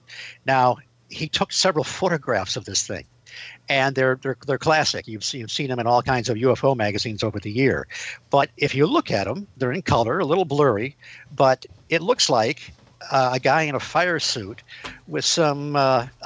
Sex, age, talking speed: male, 60-79, 190 wpm